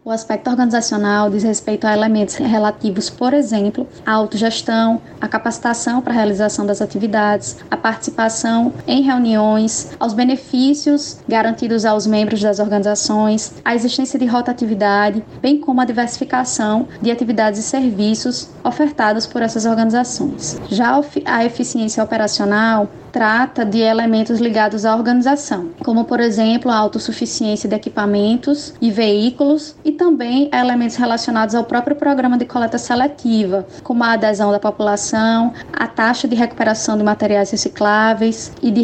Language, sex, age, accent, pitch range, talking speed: Portuguese, female, 10-29, Brazilian, 220-255 Hz, 135 wpm